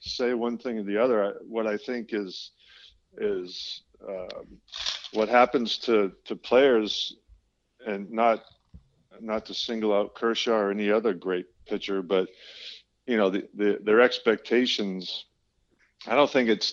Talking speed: 145 wpm